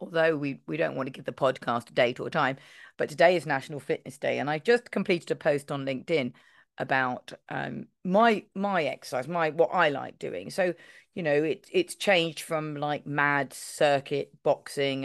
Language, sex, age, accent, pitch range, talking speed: English, female, 40-59, British, 145-185 Hz, 190 wpm